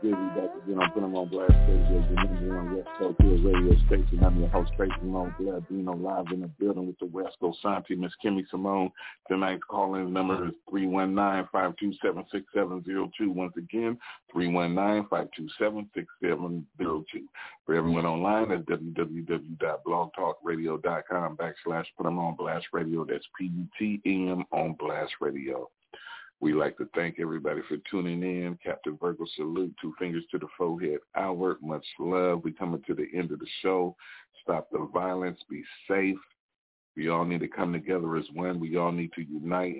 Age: 40-59